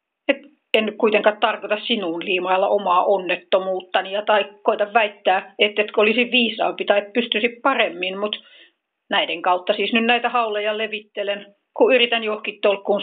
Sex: female